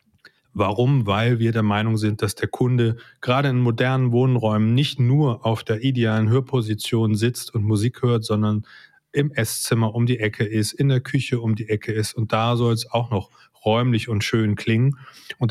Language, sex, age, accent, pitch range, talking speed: German, male, 30-49, German, 110-125 Hz, 185 wpm